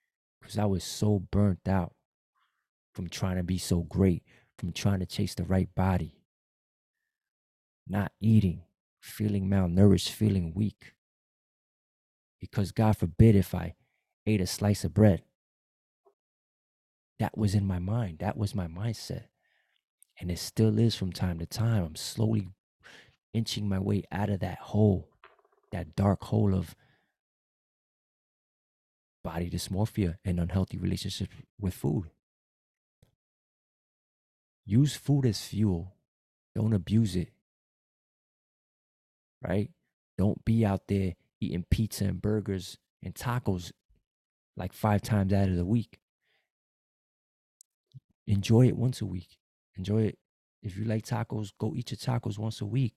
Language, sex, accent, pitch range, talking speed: English, male, American, 90-110 Hz, 130 wpm